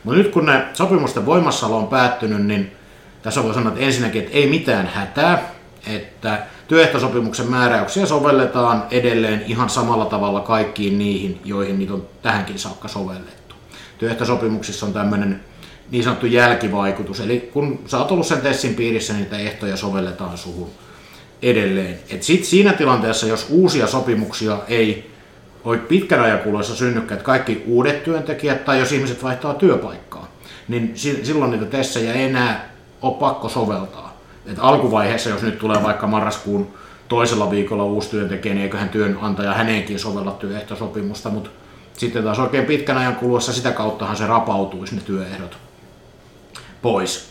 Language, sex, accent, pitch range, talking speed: Finnish, male, native, 100-125 Hz, 145 wpm